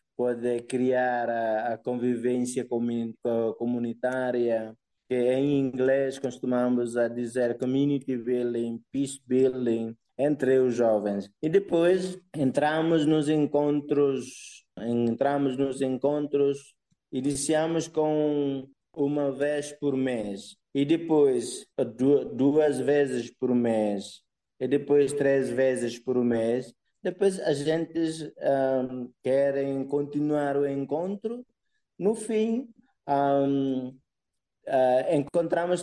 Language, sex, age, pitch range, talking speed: Portuguese, male, 20-39, 125-150 Hz, 90 wpm